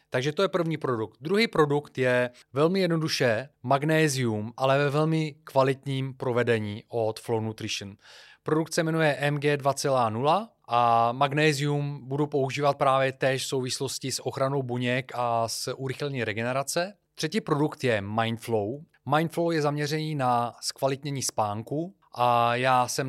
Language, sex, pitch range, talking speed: Czech, male, 115-145 Hz, 135 wpm